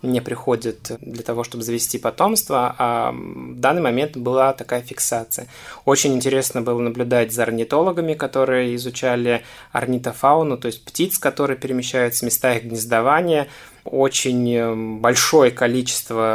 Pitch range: 115-130 Hz